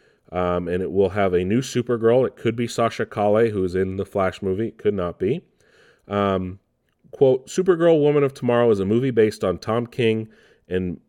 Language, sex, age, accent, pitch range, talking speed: English, male, 40-59, American, 95-120 Hz, 200 wpm